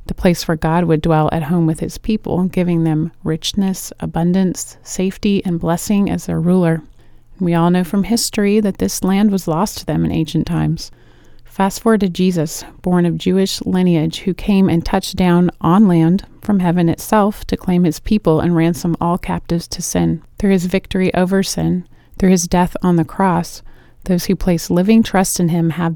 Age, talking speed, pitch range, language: 30-49, 190 wpm, 170-190 Hz, English